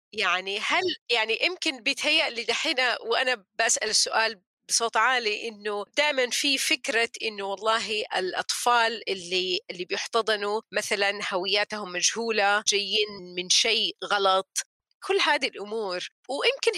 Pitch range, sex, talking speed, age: 205-280 Hz, female, 115 wpm, 30-49